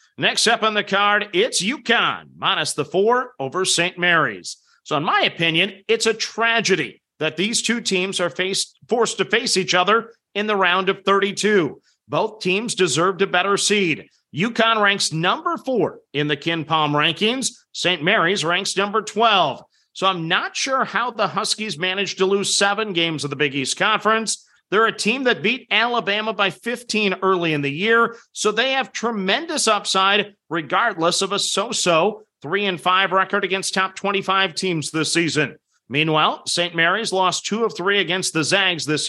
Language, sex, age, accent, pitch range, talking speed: English, male, 40-59, American, 180-215 Hz, 175 wpm